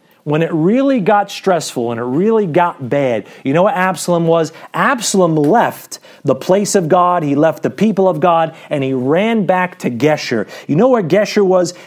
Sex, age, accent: male, 40-59, American